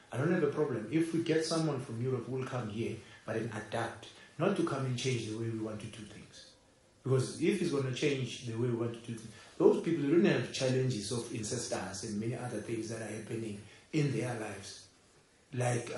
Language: English